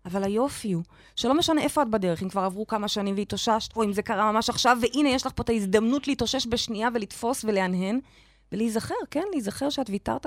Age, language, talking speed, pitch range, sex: 20-39, Hebrew, 205 wpm, 210-295 Hz, female